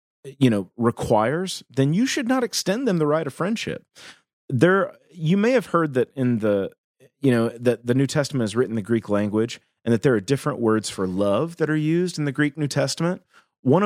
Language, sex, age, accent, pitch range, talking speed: English, male, 30-49, American, 105-155 Hz, 215 wpm